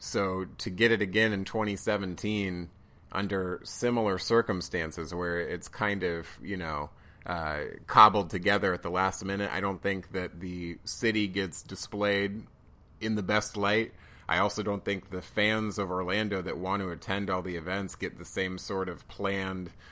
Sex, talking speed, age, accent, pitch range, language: male, 170 wpm, 30-49, American, 90-105 Hz, English